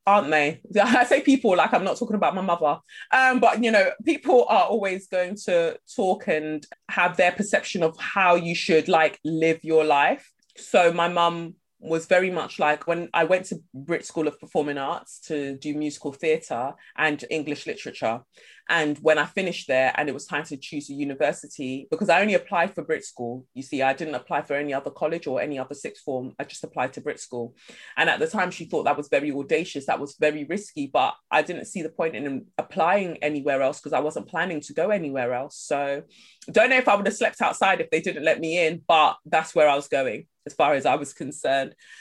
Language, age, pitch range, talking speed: English, 20-39, 145-180 Hz, 225 wpm